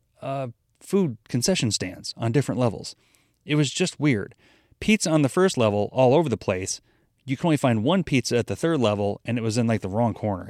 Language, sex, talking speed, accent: English, male, 215 wpm, American